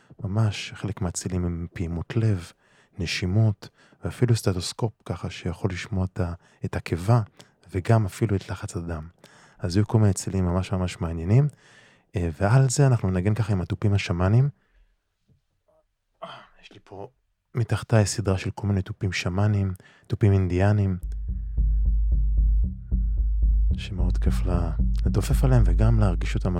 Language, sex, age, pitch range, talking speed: Hebrew, male, 20-39, 90-115 Hz, 120 wpm